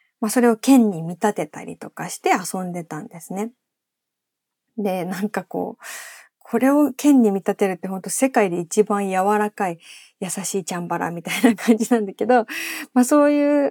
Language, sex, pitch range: Japanese, female, 185-255 Hz